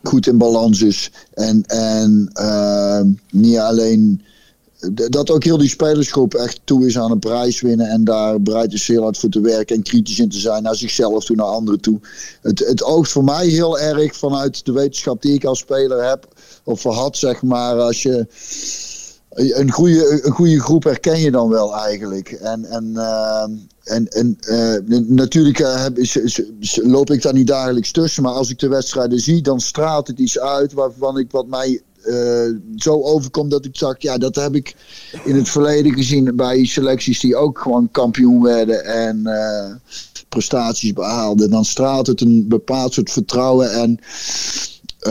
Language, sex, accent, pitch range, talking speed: Dutch, male, Dutch, 110-140 Hz, 180 wpm